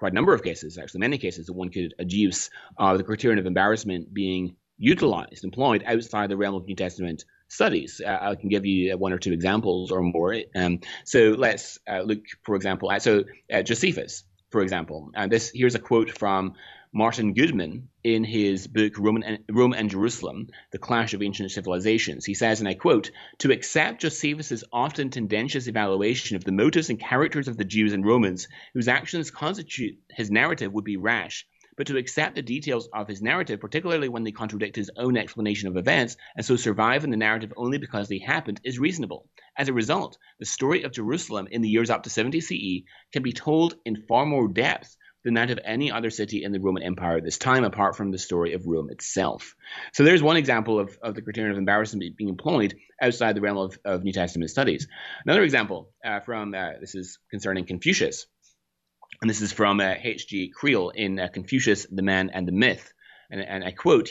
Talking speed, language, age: 205 wpm, English, 30-49